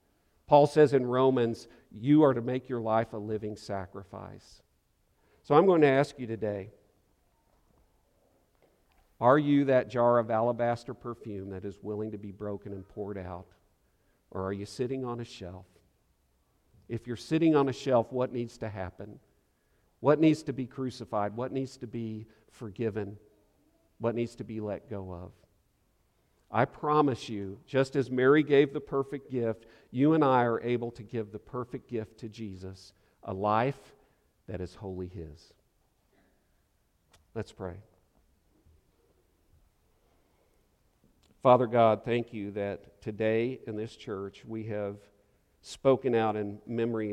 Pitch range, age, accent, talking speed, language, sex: 100-125 Hz, 50-69, American, 145 wpm, English, male